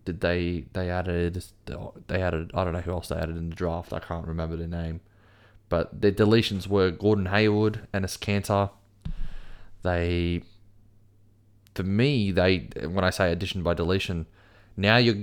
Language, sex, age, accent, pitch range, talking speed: English, male, 20-39, Australian, 85-100 Hz, 160 wpm